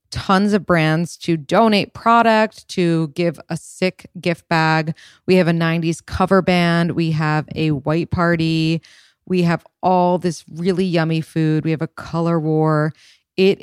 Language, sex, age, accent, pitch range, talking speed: English, female, 20-39, American, 160-185 Hz, 160 wpm